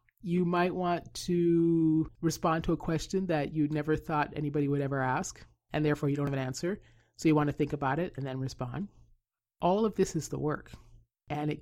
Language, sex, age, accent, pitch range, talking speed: English, male, 40-59, American, 135-165 Hz, 210 wpm